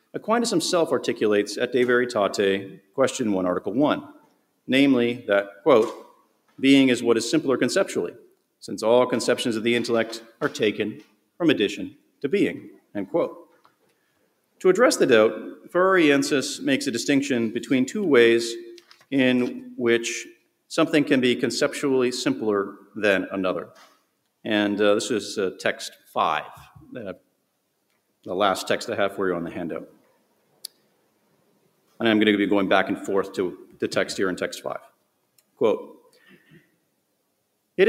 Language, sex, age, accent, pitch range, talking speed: English, male, 50-69, American, 110-155 Hz, 140 wpm